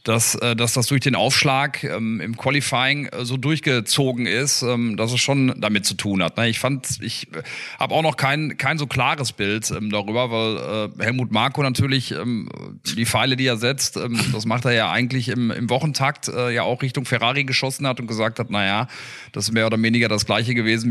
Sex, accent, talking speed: male, German, 215 wpm